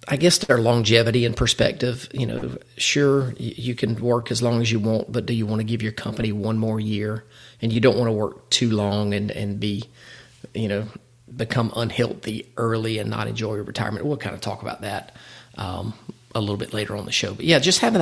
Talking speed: 225 wpm